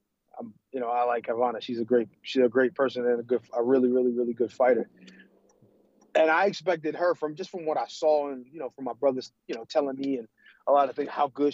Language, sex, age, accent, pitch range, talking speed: English, male, 20-39, American, 130-160 Hz, 250 wpm